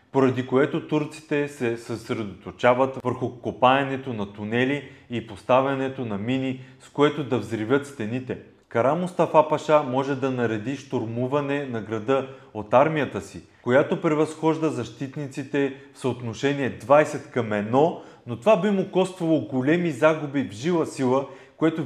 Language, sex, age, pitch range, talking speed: Bulgarian, male, 30-49, 120-145 Hz, 135 wpm